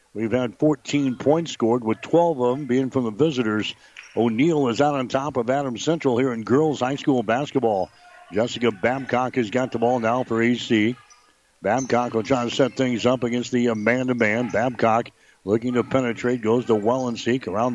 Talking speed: 195 wpm